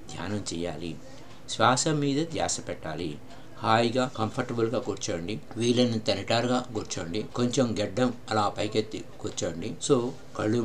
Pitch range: 105-130 Hz